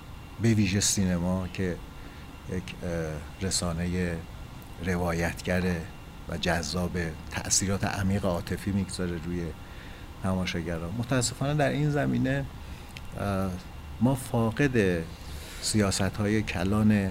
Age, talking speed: 50-69, 80 wpm